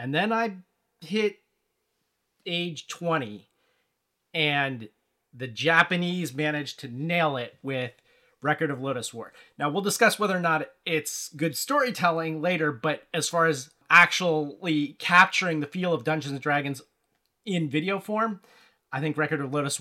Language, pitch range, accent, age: English, 135-175 Hz, American, 30-49